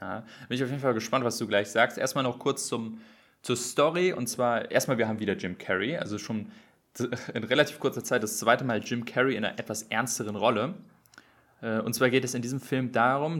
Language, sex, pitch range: German, male, 110-130 Hz